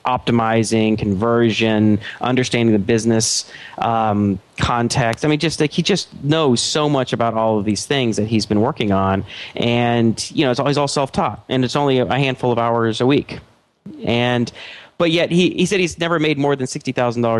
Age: 30-49